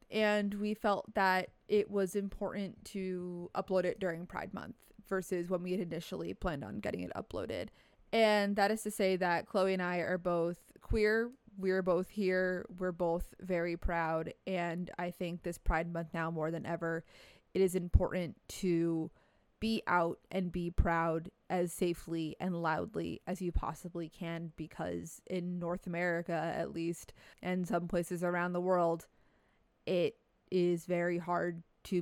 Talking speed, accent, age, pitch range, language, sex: 160 wpm, American, 20-39, 175-210 Hz, English, female